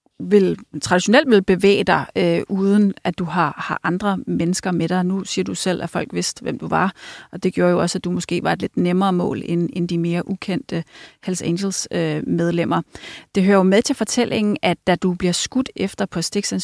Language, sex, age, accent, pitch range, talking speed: Danish, female, 30-49, native, 175-210 Hz, 225 wpm